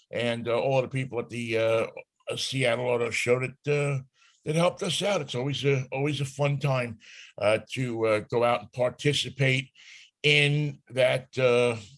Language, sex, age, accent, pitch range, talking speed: English, male, 60-79, American, 120-150 Hz, 170 wpm